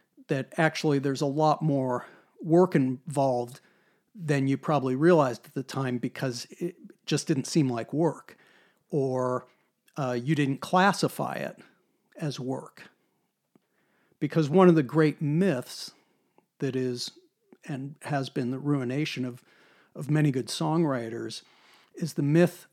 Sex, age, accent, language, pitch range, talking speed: male, 50-69, American, English, 135-170 Hz, 135 wpm